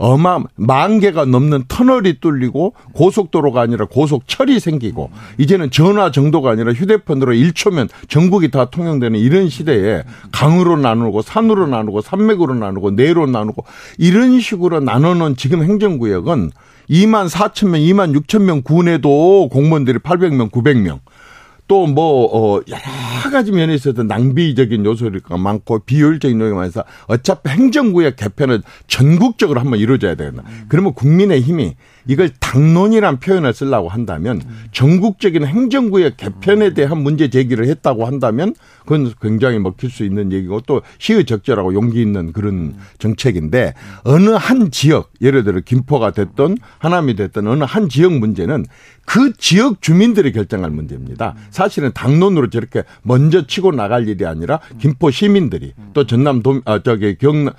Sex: male